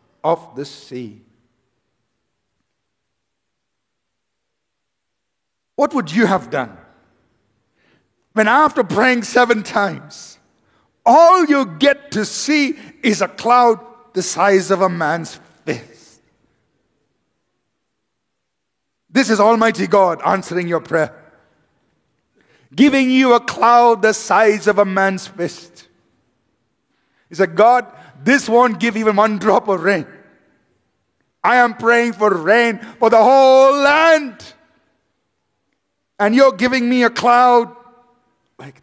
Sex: male